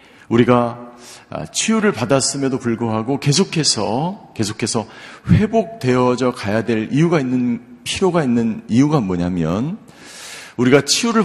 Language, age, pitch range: Korean, 50-69, 115-160 Hz